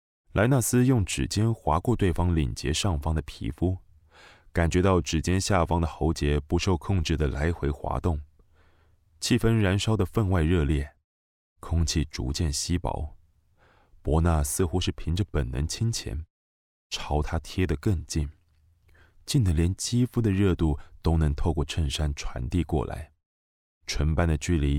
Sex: male